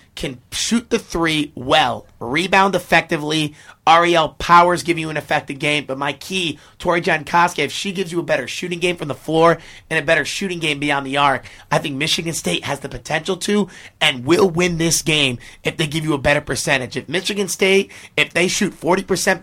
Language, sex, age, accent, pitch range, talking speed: English, male, 30-49, American, 135-170 Hz, 200 wpm